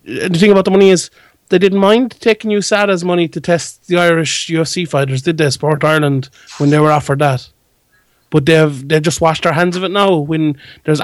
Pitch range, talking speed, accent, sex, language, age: 135-160 Hz, 215 wpm, Irish, male, English, 30-49